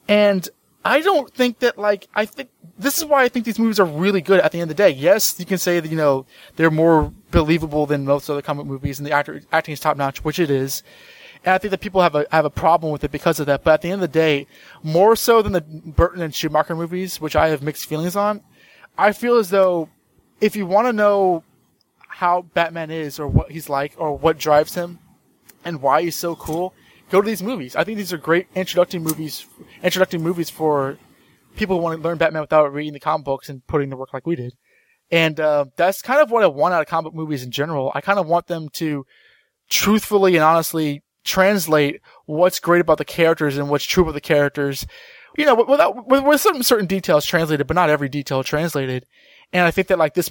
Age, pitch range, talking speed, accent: 20-39, 150-195 Hz, 235 wpm, American